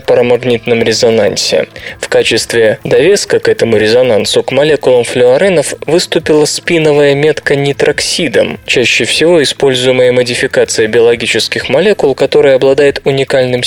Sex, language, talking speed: male, Russian, 105 wpm